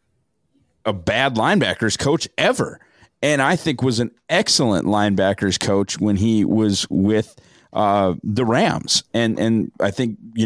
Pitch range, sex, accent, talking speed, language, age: 95-115 Hz, male, American, 145 wpm, English, 30-49